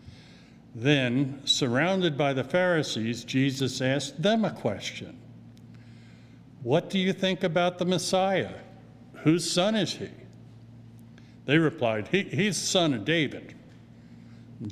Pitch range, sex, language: 115-140 Hz, male, English